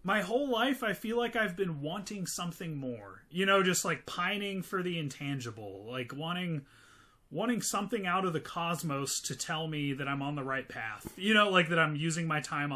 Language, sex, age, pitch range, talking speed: English, male, 30-49, 145-225 Hz, 205 wpm